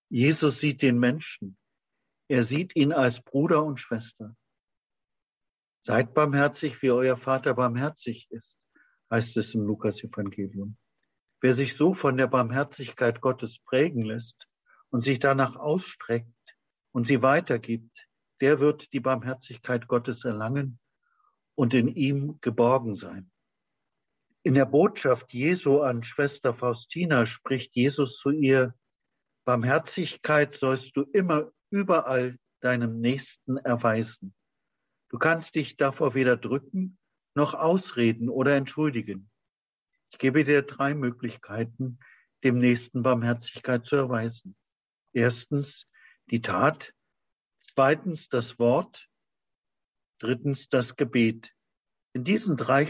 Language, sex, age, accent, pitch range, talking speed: German, male, 50-69, German, 120-140 Hz, 115 wpm